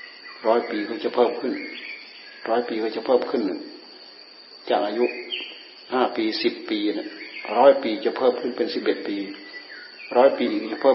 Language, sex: Thai, male